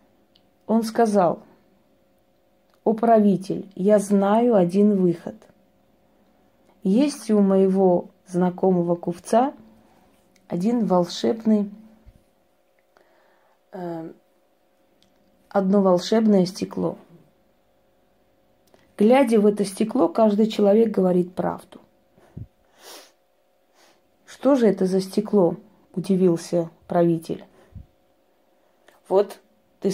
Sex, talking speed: female, 70 wpm